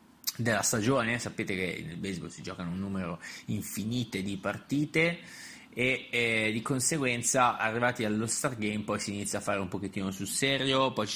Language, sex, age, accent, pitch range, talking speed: Italian, male, 20-39, native, 100-125 Hz, 165 wpm